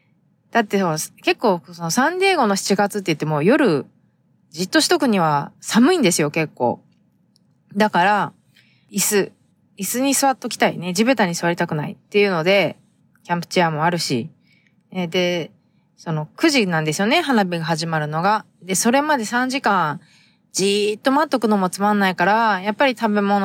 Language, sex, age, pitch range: Japanese, female, 20-39, 175-220 Hz